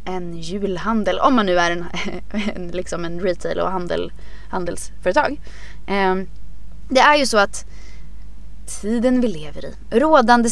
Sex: female